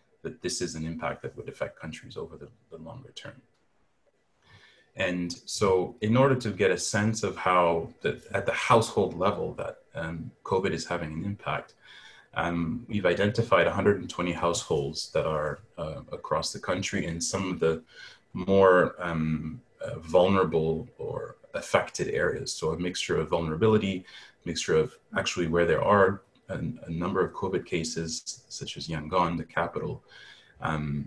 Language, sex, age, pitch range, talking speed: English, male, 30-49, 80-95 Hz, 155 wpm